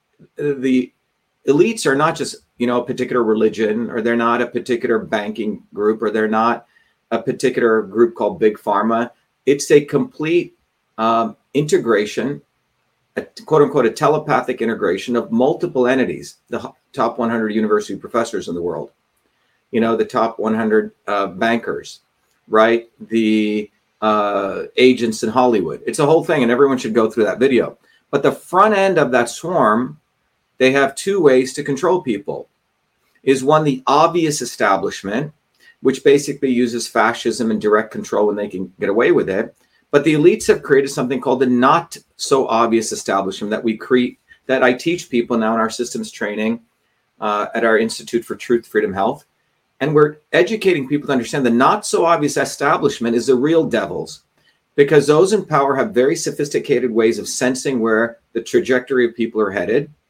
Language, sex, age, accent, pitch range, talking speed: English, male, 40-59, American, 110-140 Hz, 170 wpm